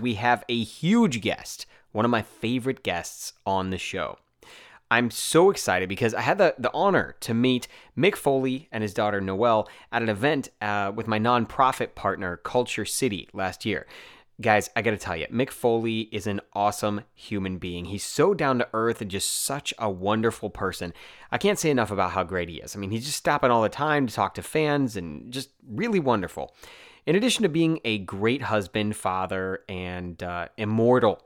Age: 30-49